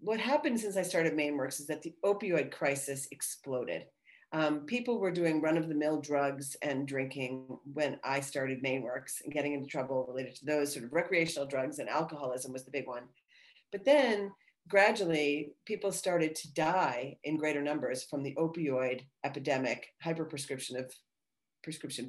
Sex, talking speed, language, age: female, 160 wpm, English, 40-59